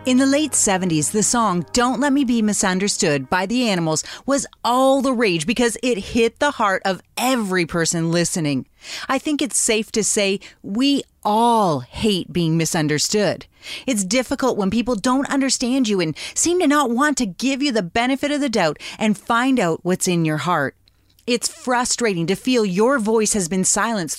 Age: 30-49